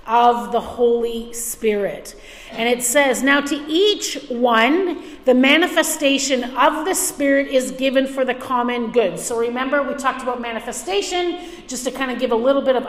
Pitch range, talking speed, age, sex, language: 240-295 Hz, 170 wpm, 40-59, female, English